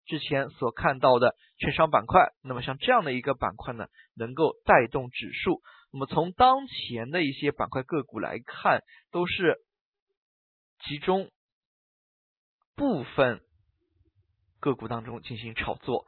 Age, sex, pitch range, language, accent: 20-39, male, 120-165 Hz, Chinese, native